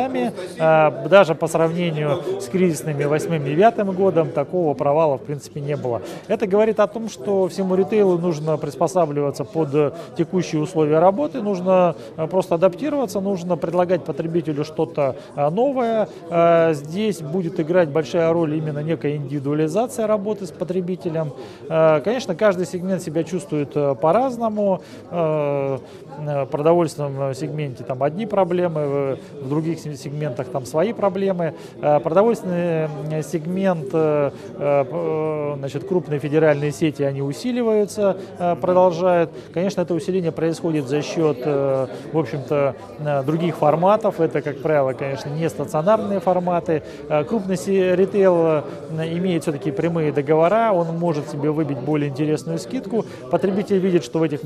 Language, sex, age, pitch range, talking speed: Russian, male, 30-49, 150-185 Hz, 120 wpm